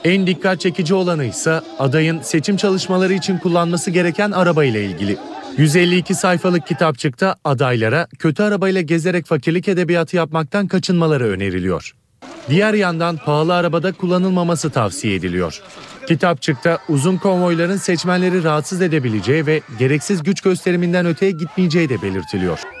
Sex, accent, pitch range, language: male, native, 150-185 Hz, Turkish